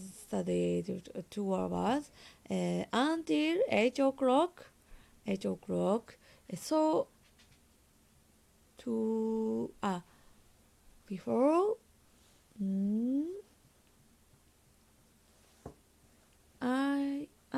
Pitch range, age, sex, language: 180-270 Hz, 20-39, female, Japanese